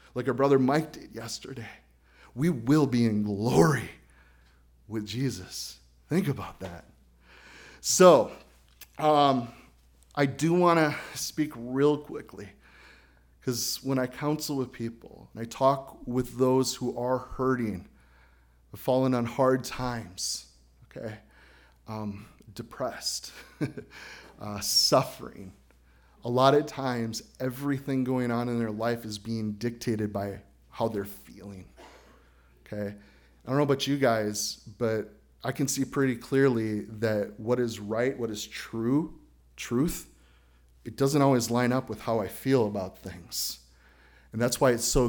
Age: 30-49